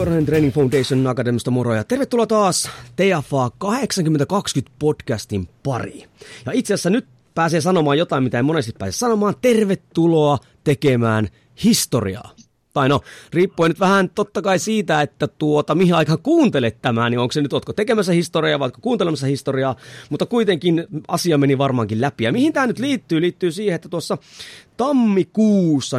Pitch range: 140-205 Hz